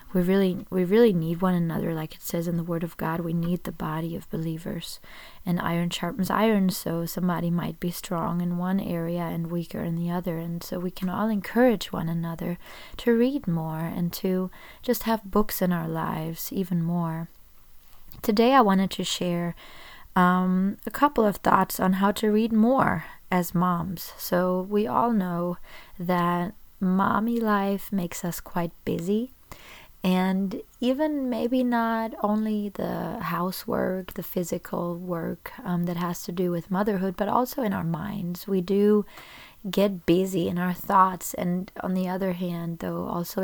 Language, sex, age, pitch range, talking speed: English, female, 20-39, 175-210 Hz, 170 wpm